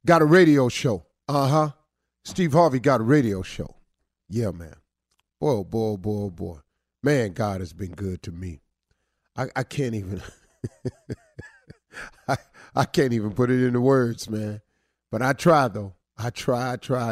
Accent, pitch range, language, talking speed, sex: American, 100-140 Hz, English, 170 wpm, male